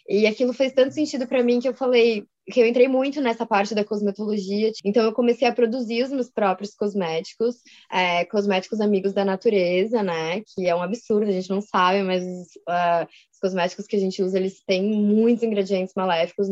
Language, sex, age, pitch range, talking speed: Portuguese, female, 10-29, 195-235 Hz, 195 wpm